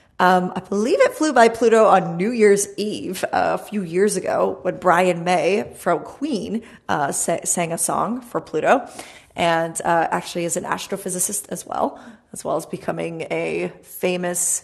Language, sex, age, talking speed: English, female, 30-49, 170 wpm